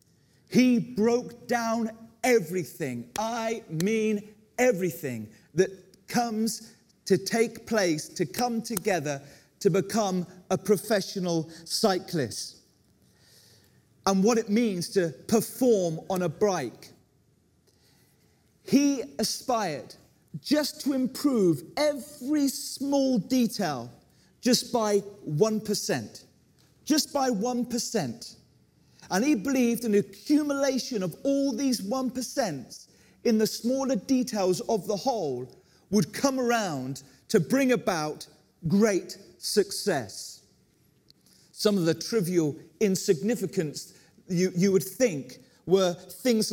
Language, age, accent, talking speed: English, 40-59, British, 100 wpm